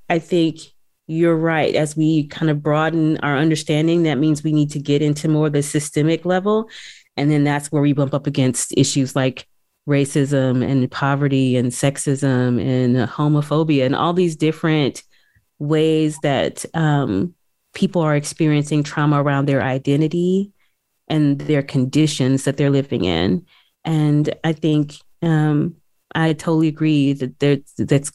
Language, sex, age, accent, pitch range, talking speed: English, female, 30-49, American, 140-160 Hz, 150 wpm